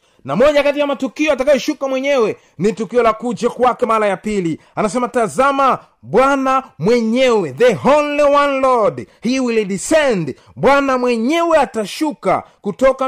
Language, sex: Swahili, male